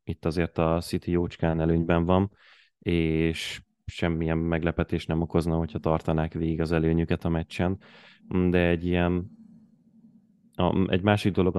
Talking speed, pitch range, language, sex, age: 130 wpm, 80-90 Hz, Hungarian, male, 30-49